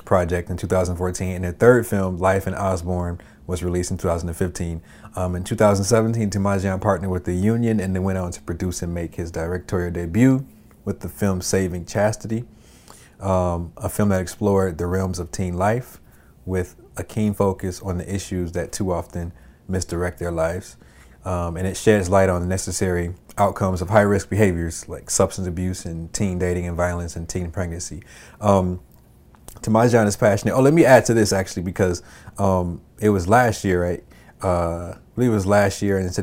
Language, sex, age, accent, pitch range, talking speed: English, male, 30-49, American, 90-100 Hz, 180 wpm